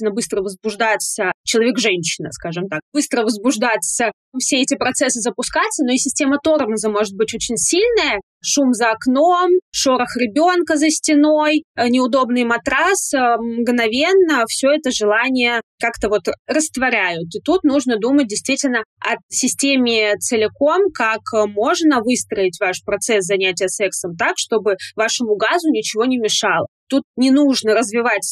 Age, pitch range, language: 20-39, 220-280 Hz, Russian